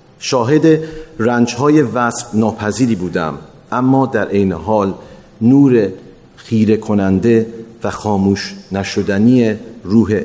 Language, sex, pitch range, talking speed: Persian, male, 100-125 Hz, 95 wpm